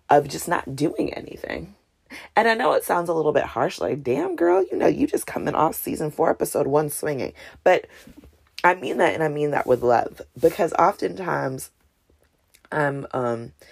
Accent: American